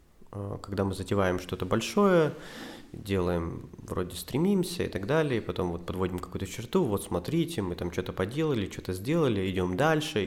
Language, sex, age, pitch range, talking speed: Russian, male, 20-39, 90-115 Hz, 145 wpm